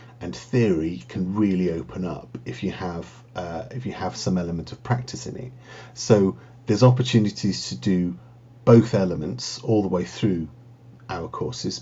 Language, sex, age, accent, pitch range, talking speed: English, male, 50-69, British, 100-125 Hz, 165 wpm